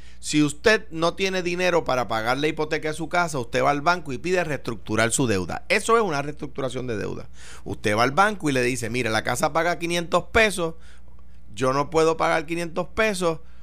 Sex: male